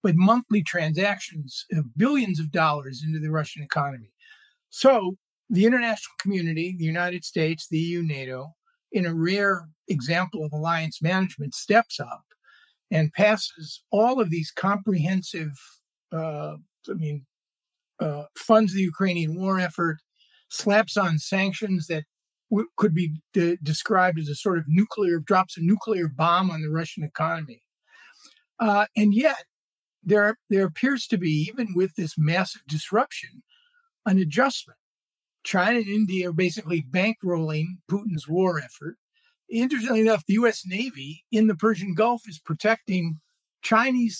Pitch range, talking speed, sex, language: 165-220 Hz, 135 wpm, male, English